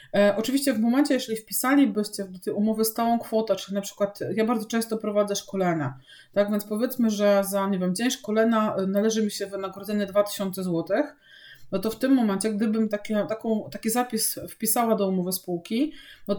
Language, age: Polish, 30-49